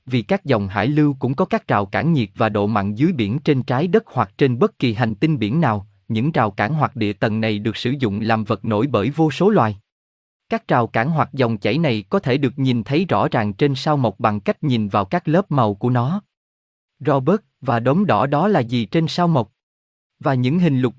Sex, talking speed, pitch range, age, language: male, 245 wpm, 110-155 Hz, 20-39, Vietnamese